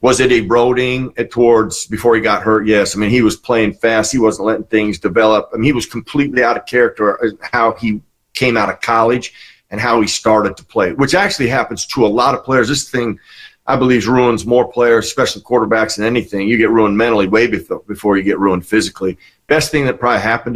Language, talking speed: English, 225 wpm